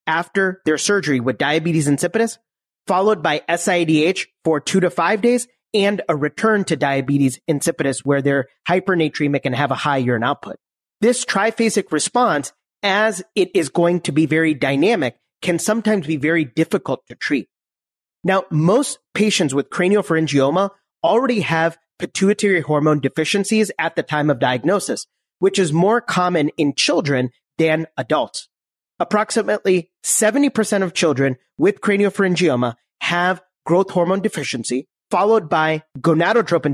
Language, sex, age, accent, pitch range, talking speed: English, male, 30-49, American, 150-200 Hz, 135 wpm